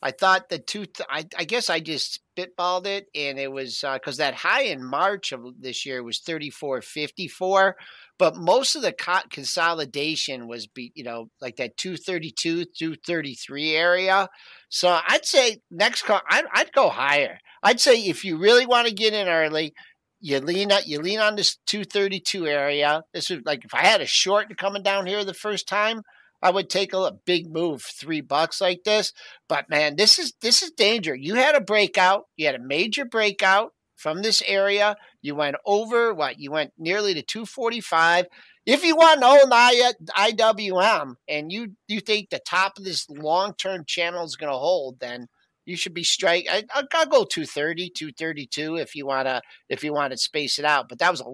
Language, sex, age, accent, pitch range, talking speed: English, male, 50-69, American, 150-205 Hz, 210 wpm